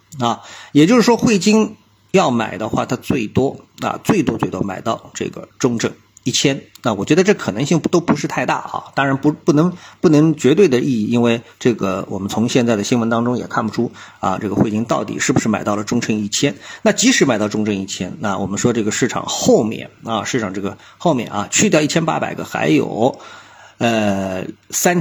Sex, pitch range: male, 105-155 Hz